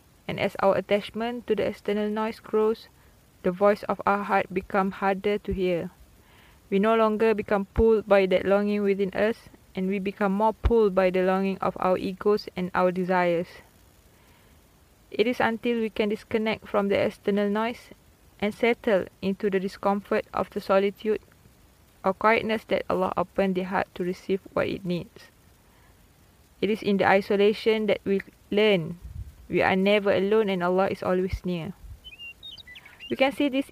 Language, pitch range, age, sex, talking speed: Malay, 185-210 Hz, 20-39, female, 165 wpm